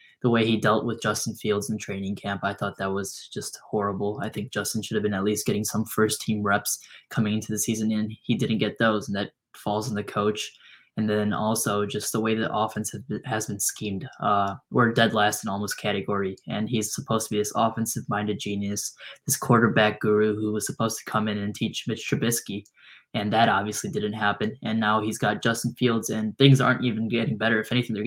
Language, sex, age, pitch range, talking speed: English, male, 10-29, 105-120 Hz, 220 wpm